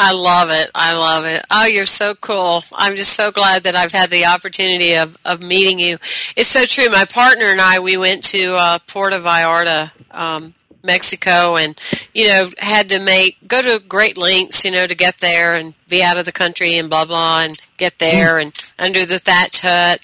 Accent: American